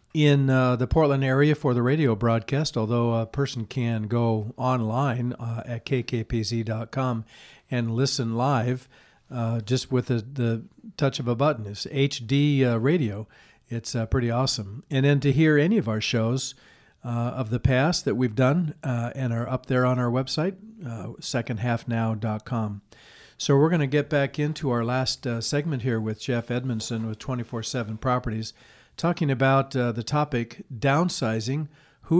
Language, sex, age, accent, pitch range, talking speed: English, male, 50-69, American, 115-135 Hz, 165 wpm